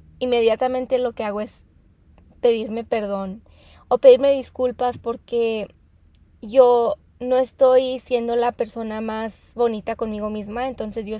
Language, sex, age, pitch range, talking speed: English, female, 20-39, 215-250 Hz, 125 wpm